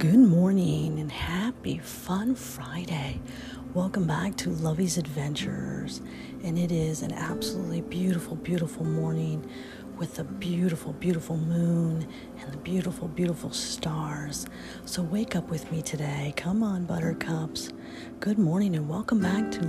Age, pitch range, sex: 40-59, 150-190 Hz, female